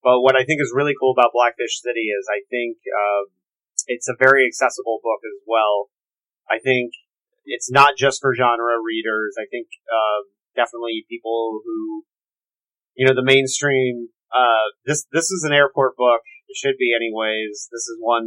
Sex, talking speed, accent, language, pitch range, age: male, 175 wpm, American, English, 110-145 Hz, 30-49